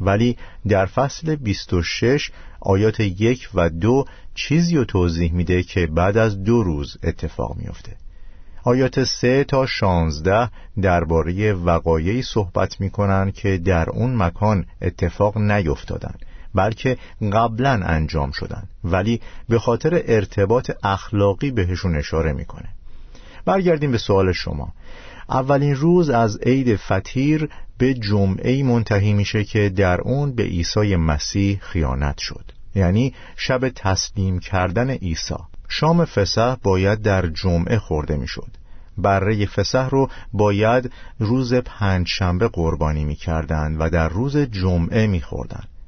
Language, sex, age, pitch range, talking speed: Persian, male, 50-69, 90-120 Hz, 125 wpm